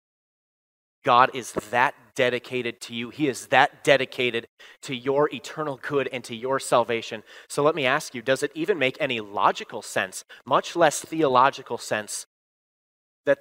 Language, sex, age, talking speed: English, male, 30-49, 155 wpm